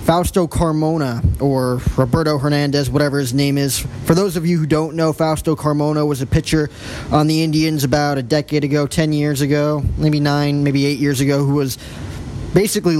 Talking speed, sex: 185 wpm, male